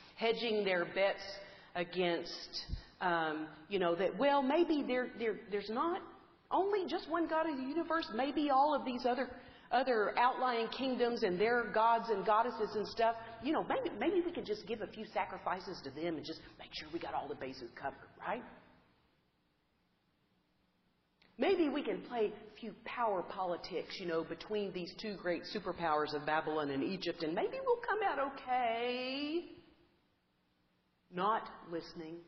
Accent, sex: American, female